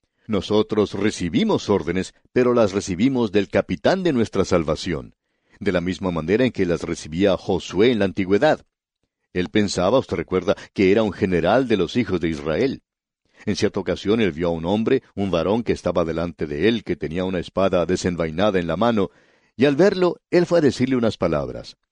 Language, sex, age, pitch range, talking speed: English, male, 60-79, 95-130 Hz, 185 wpm